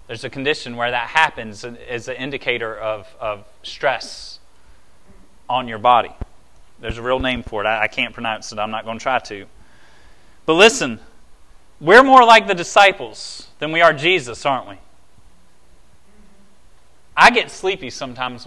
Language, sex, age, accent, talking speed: English, male, 30-49, American, 160 wpm